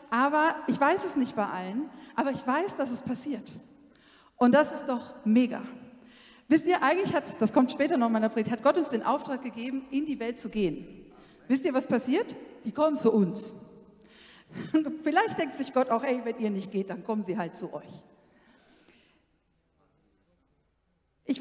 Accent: German